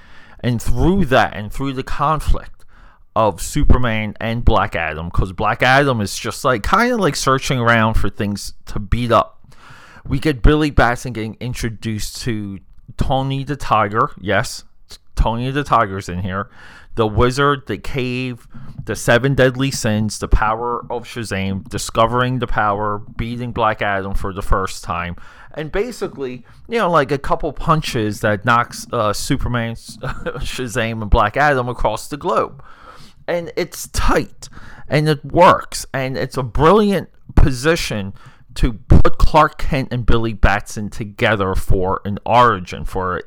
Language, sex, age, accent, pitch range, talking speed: English, male, 30-49, American, 105-135 Hz, 155 wpm